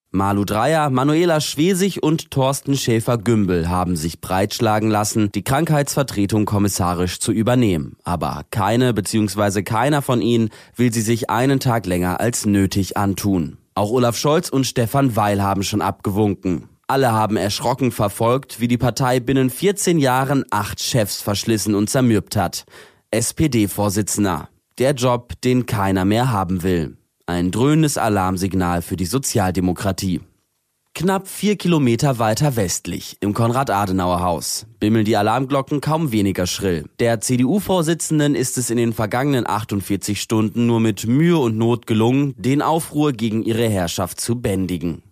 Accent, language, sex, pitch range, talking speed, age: German, German, male, 100-130 Hz, 140 wpm, 30-49